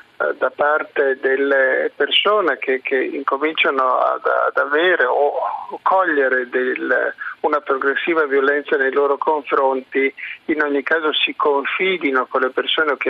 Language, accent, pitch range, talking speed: Italian, native, 135-195 Hz, 130 wpm